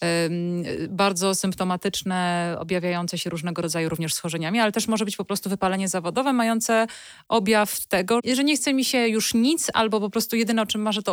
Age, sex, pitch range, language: 30-49, female, 180-215 Hz, Polish